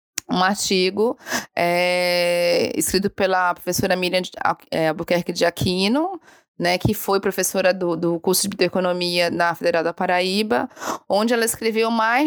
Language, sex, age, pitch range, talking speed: Portuguese, female, 20-39, 180-240 Hz, 140 wpm